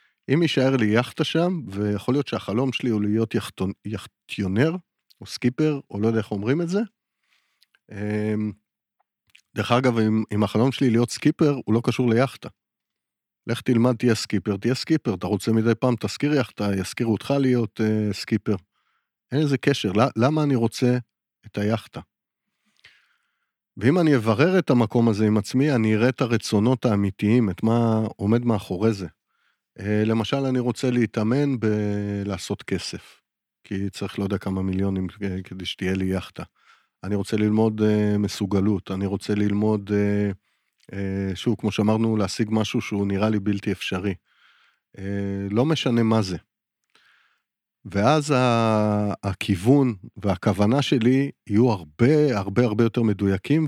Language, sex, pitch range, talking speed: Hebrew, male, 100-125 Hz, 145 wpm